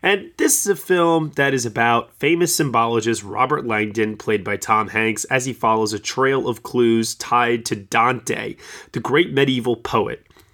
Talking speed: 170 wpm